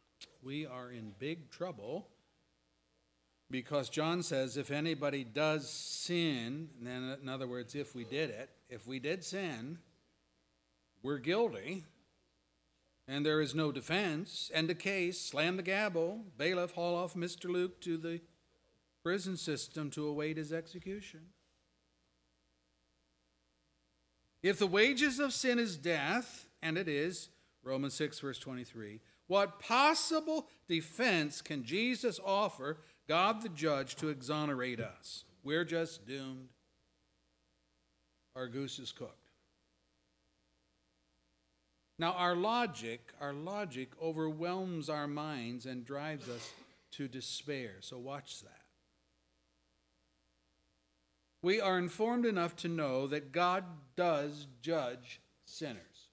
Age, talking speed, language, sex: 50-69, 120 wpm, English, male